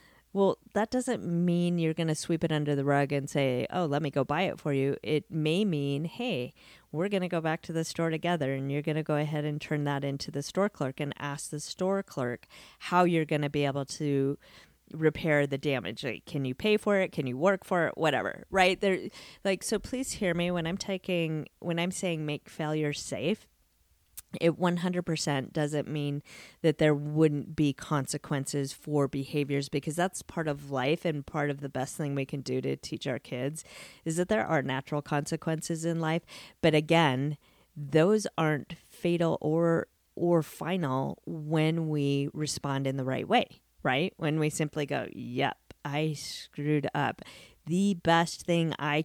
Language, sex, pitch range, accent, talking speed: English, female, 145-170 Hz, American, 190 wpm